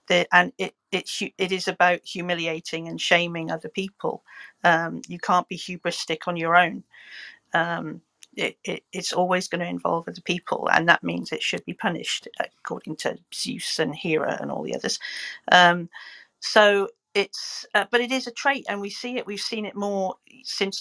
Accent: British